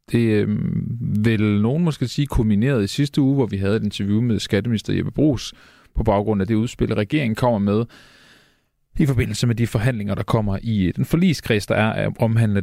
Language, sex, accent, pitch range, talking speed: Danish, male, native, 105-140 Hz, 195 wpm